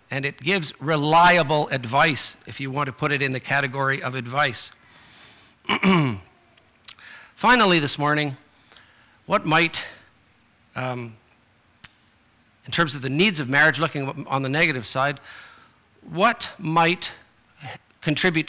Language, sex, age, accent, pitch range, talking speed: English, male, 50-69, American, 130-160 Hz, 120 wpm